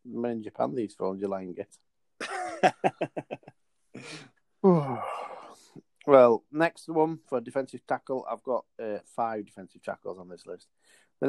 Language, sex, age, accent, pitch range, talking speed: English, male, 30-49, British, 110-130 Hz, 135 wpm